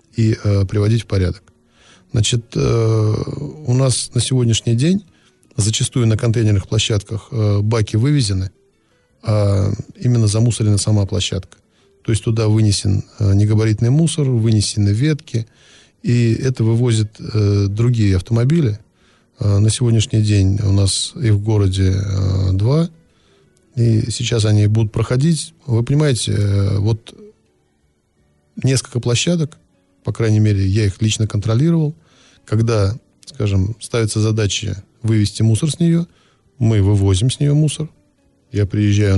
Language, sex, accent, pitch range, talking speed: Russian, male, native, 105-125 Hz, 125 wpm